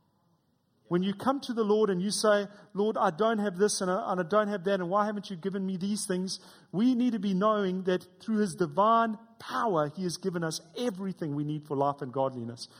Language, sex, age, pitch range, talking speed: English, male, 40-59, 155-215 Hz, 230 wpm